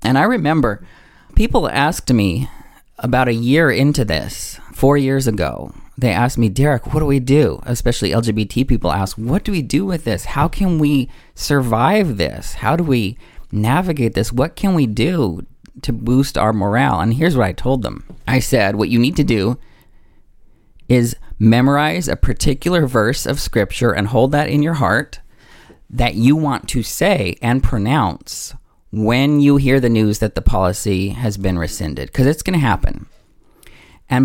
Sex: male